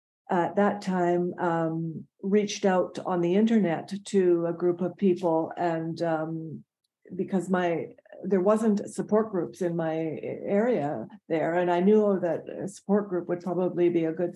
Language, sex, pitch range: English, female, 170-195 Hz